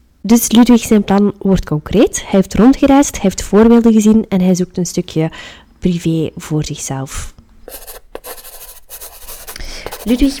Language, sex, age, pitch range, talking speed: Dutch, female, 20-39, 180-215 Hz, 125 wpm